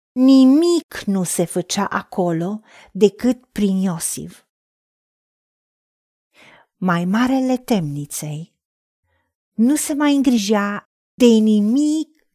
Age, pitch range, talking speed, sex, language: 40-59, 195-285 Hz, 85 wpm, female, Romanian